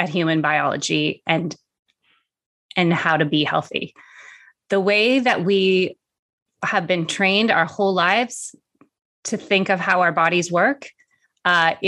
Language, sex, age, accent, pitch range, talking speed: English, female, 30-49, American, 180-215 Hz, 135 wpm